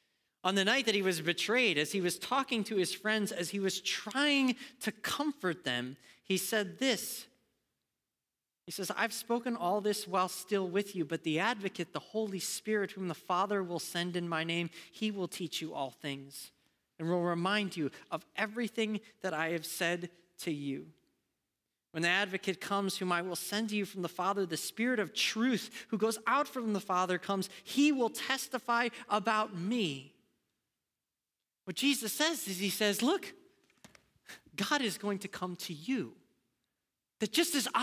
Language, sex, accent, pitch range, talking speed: English, male, American, 175-245 Hz, 180 wpm